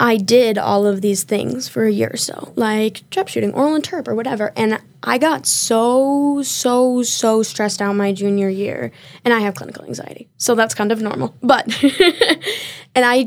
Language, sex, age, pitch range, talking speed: English, female, 10-29, 205-235 Hz, 190 wpm